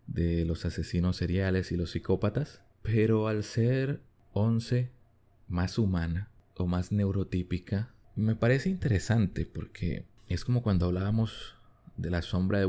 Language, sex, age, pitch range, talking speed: Spanish, male, 20-39, 90-110 Hz, 130 wpm